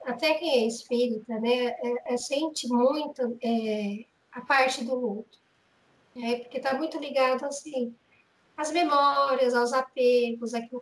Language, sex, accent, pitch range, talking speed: Portuguese, female, Brazilian, 245-325 Hz, 140 wpm